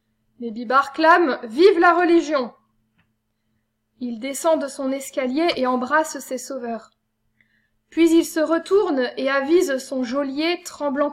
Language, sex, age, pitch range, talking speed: French, female, 20-39, 245-310 Hz, 130 wpm